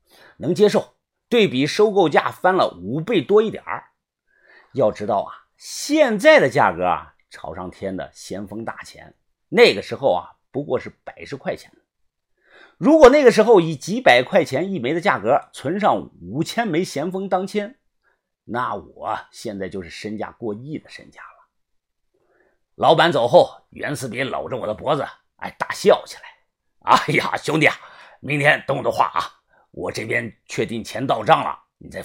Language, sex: Chinese, male